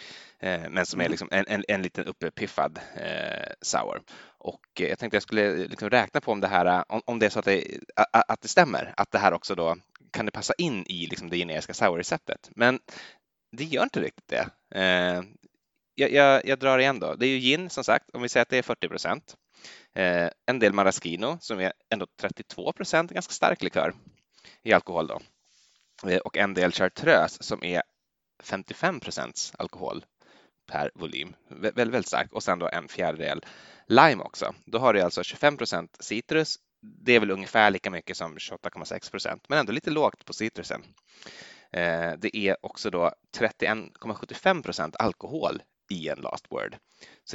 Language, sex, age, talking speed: Swedish, male, 20-39, 180 wpm